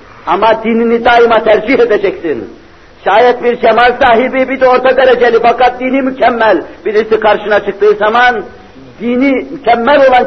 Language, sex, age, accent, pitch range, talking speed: Turkish, male, 60-79, native, 205-250 Hz, 135 wpm